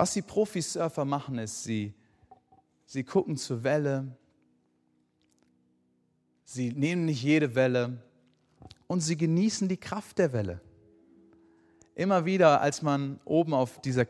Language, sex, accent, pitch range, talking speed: German, male, German, 100-145 Hz, 125 wpm